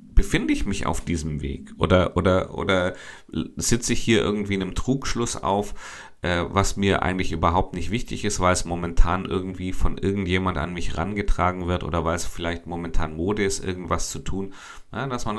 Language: German